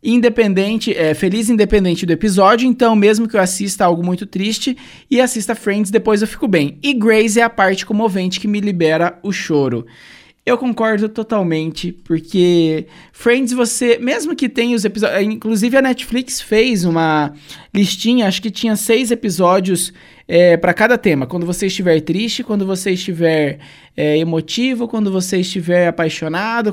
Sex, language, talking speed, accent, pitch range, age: male, Portuguese, 155 wpm, Brazilian, 160-225 Hz, 20-39